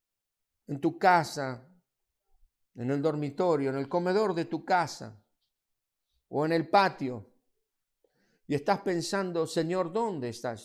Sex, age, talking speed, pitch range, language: male, 50-69, 125 wpm, 135-200 Hz, Spanish